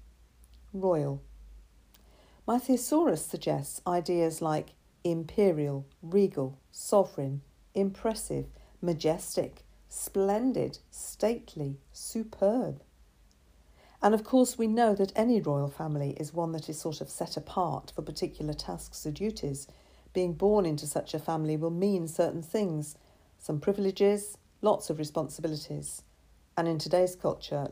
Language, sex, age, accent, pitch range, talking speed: English, female, 50-69, British, 135-195 Hz, 120 wpm